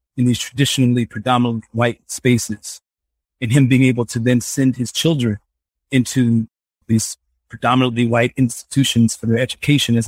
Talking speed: 145 wpm